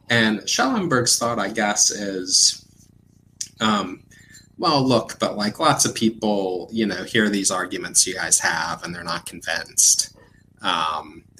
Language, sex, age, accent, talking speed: English, male, 30-49, American, 140 wpm